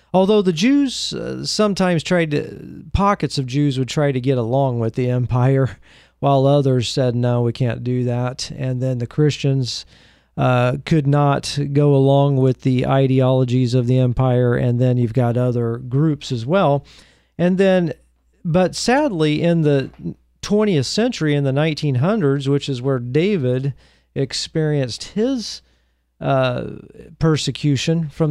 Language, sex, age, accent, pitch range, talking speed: English, male, 40-59, American, 125-155 Hz, 145 wpm